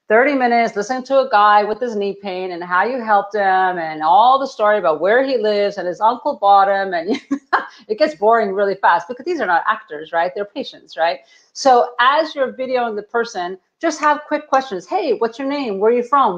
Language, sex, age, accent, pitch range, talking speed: English, female, 40-59, American, 195-250 Hz, 225 wpm